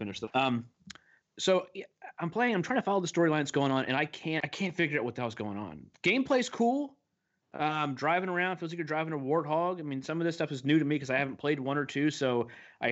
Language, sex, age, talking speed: English, male, 30-49, 255 wpm